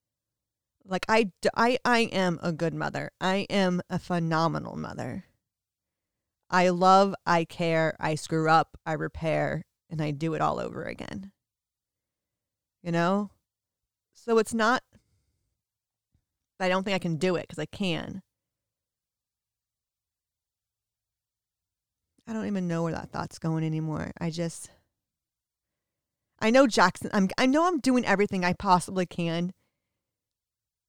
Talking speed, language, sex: 130 wpm, English, female